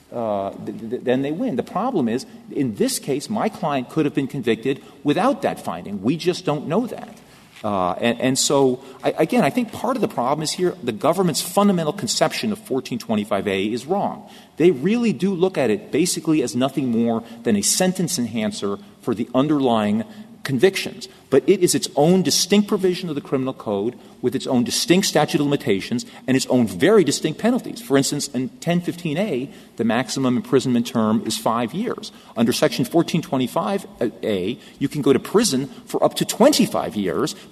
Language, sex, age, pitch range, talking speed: English, male, 40-59, 130-195 Hz, 180 wpm